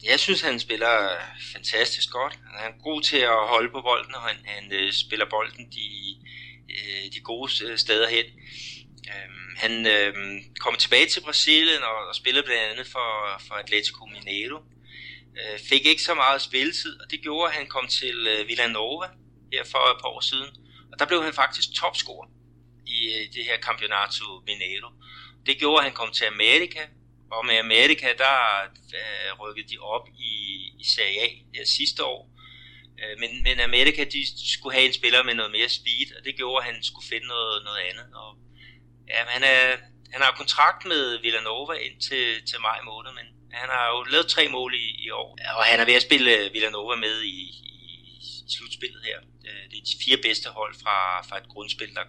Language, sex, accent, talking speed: Danish, male, native, 180 wpm